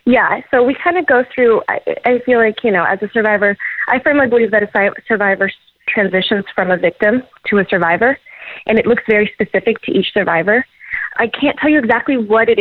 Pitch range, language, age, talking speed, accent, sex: 200-245 Hz, English, 20-39, 210 wpm, American, female